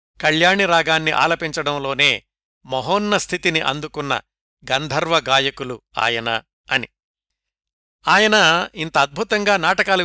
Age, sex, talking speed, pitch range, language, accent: 60-79, male, 80 wpm, 145-180 Hz, Telugu, native